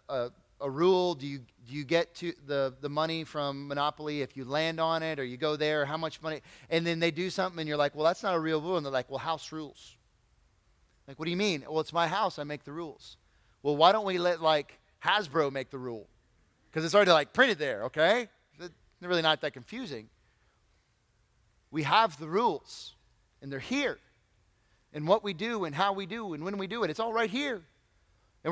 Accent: American